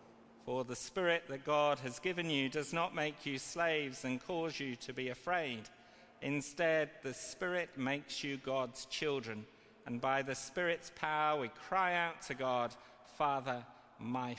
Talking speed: 160 wpm